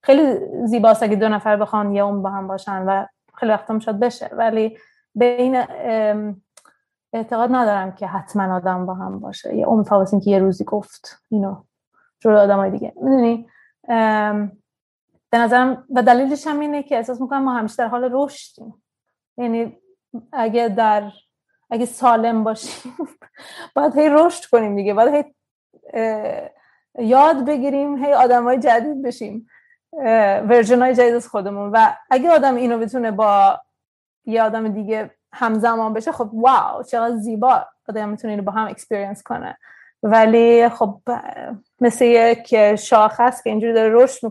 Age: 30-49